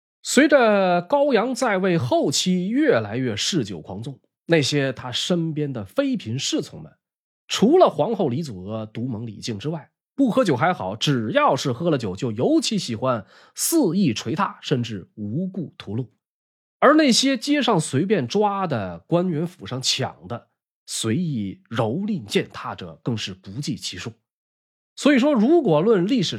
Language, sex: Chinese, male